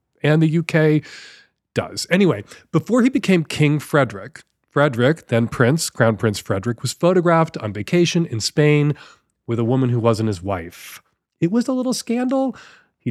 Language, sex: English, male